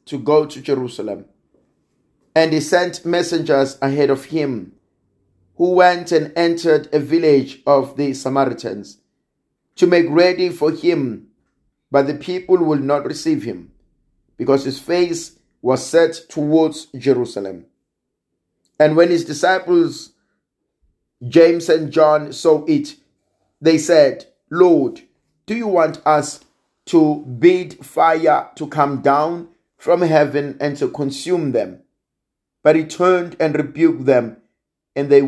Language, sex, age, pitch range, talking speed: English, male, 50-69, 130-170 Hz, 130 wpm